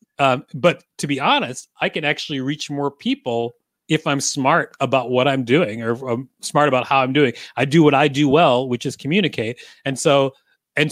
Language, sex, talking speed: English, male, 200 wpm